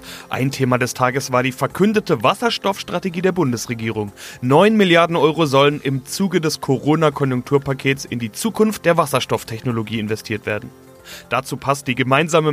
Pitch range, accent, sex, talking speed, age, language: 130-170 Hz, German, male, 140 wpm, 30-49, German